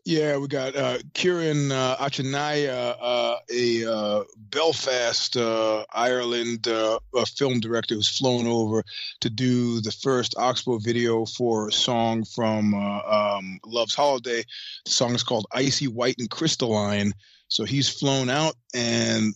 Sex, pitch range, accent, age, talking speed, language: male, 110-125 Hz, American, 30-49, 150 wpm, English